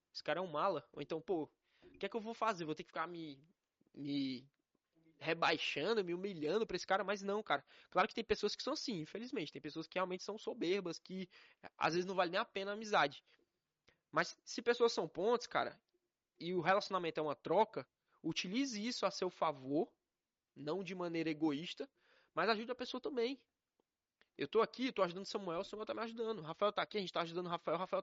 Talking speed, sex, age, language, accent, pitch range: 220 wpm, male, 20-39, Portuguese, Brazilian, 170-225 Hz